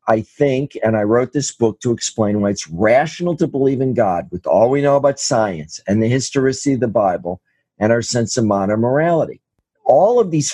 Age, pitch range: 50-69, 110-140 Hz